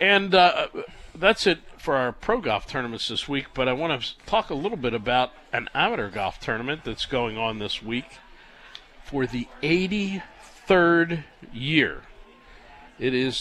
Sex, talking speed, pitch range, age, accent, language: male, 155 wpm, 110-145 Hz, 50-69, American, English